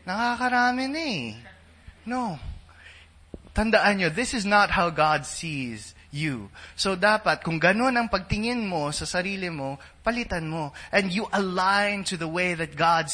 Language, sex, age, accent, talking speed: English, male, 20-39, Filipino, 145 wpm